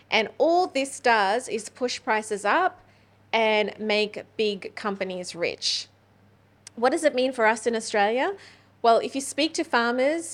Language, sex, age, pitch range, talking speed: English, female, 30-49, 205-245 Hz, 155 wpm